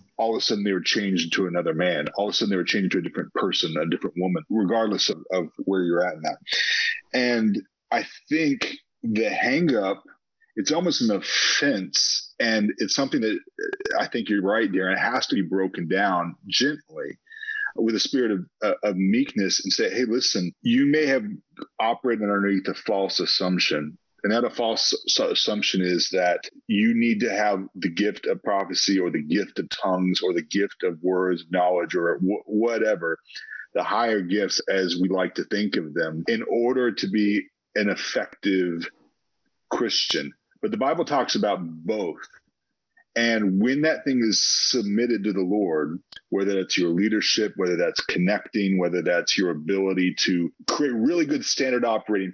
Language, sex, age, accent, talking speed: English, male, 40-59, American, 175 wpm